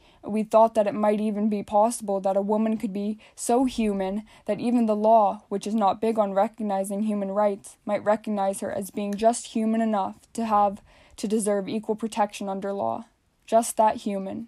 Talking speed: 190 wpm